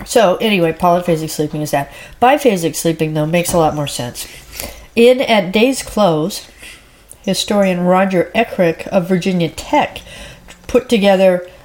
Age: 40-59